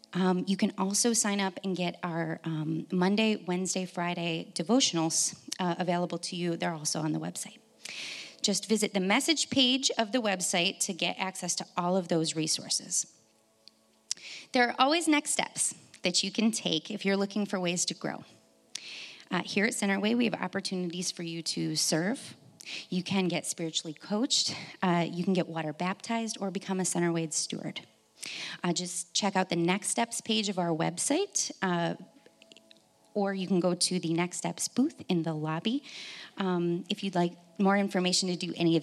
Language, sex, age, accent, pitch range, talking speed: English, female, 30-49, American, 170-210 Hz, 180 wpm